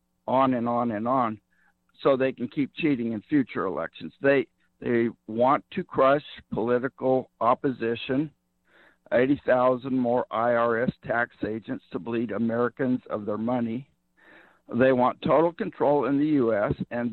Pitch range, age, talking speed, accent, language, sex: 120-145 Hz, 60-79, 135 wpm, American, English, male